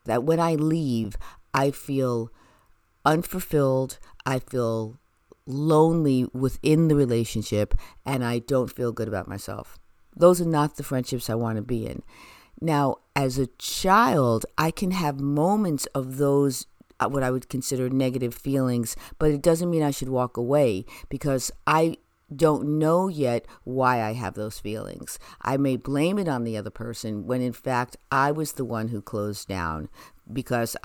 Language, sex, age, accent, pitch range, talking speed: English, female, 50-69, American, 115-140 Hz, 160 wpm